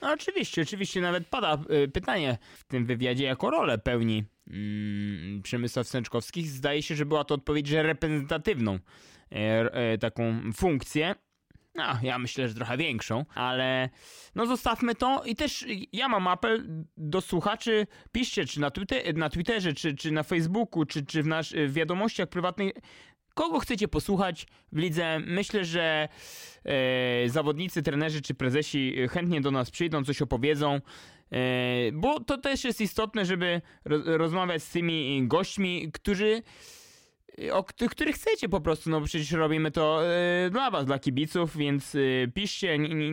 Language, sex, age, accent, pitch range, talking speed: English, male, 20-39, Polish, 135-190 Hz, 155 wpm